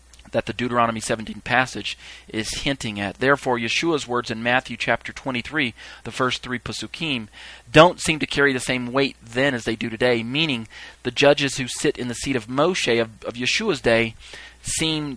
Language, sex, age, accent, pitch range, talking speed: English, male, 40-59, American, 110-130 Hz, 180 wpm